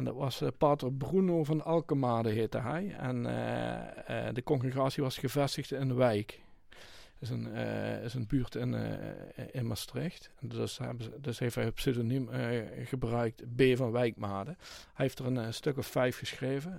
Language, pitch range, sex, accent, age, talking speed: Dutch, 120-155 Hz, male, Dutch, 50-69, 180 wpm